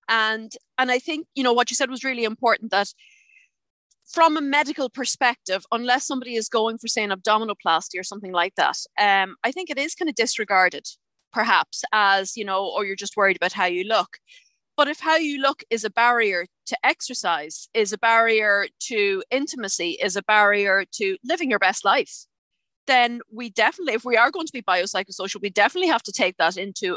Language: English